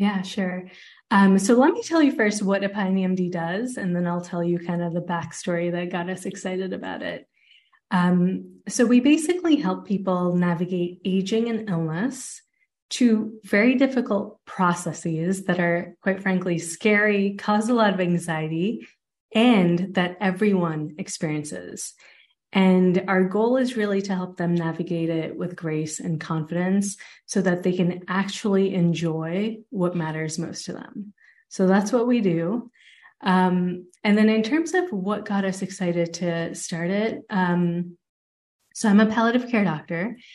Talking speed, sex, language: 155 wpm, female, English